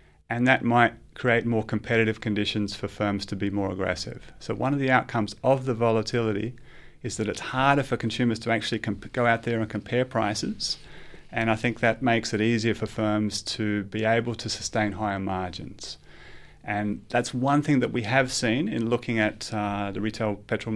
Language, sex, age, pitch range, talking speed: English, male, 30-49, 100-115 Hz, 190 wpm